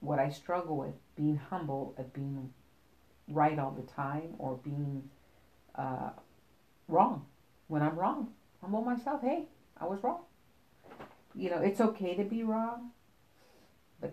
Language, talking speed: English, 140 wpm